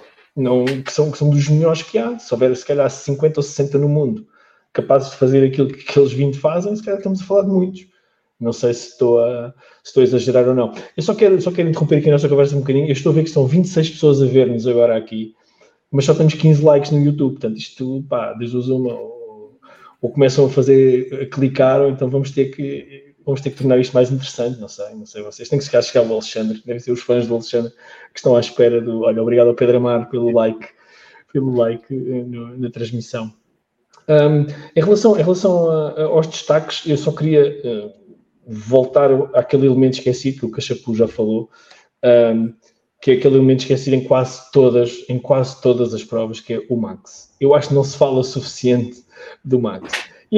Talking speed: 215 wpm